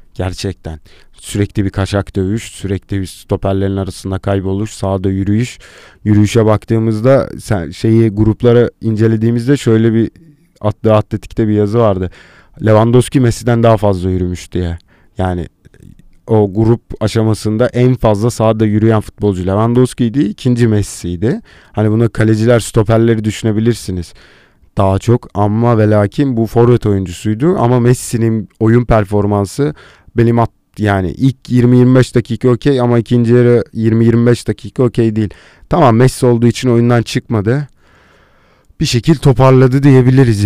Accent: native